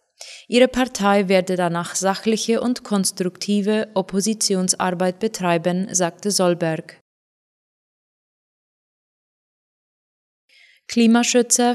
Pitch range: 180-215 Hz